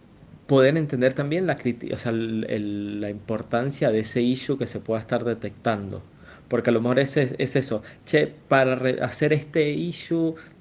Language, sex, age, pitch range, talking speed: Spanish, male, 20-39, 110-130 Hz, 145 wpm